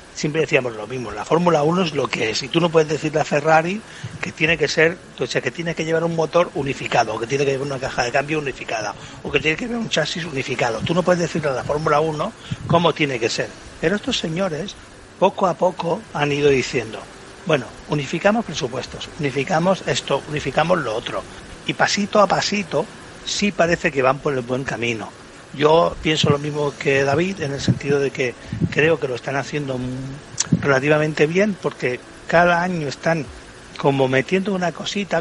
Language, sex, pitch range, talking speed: Spanish, male, 140-175 Hz, 200 wpm